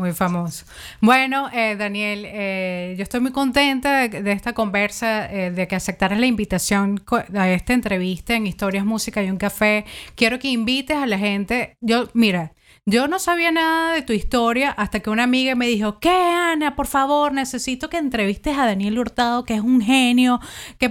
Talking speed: 185 wpm